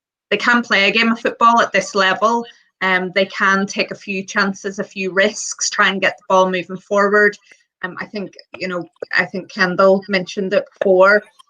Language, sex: English, female